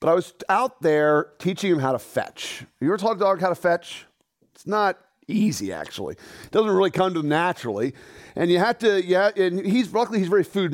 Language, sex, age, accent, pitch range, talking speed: English, male, 40-59, American, 155-220 Hz, 220 wpm